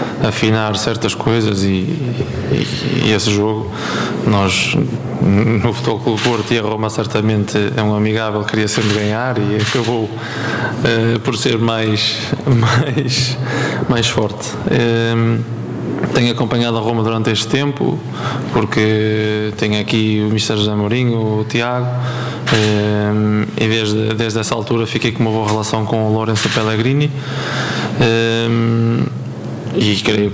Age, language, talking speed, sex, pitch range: 20-39, Italian, 130 wpm, male, 110-120 Hz